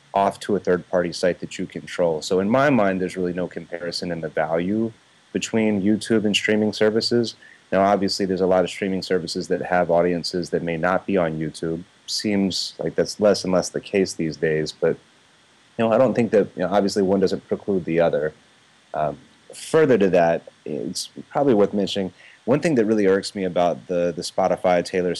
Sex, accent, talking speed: male, American, 200 wpm